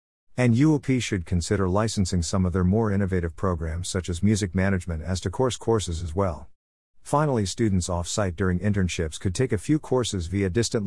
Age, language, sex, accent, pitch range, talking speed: 50-69, English, male, American, 85-115 Hz, 180 wpm